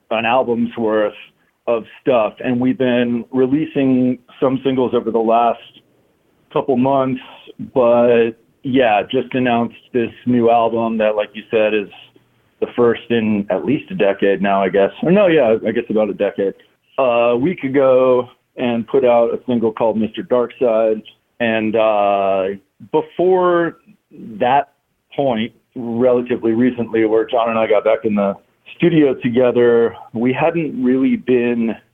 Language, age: English, 40-59